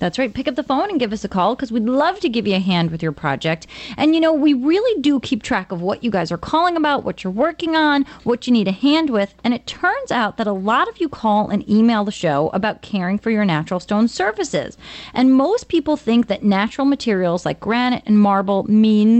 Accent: American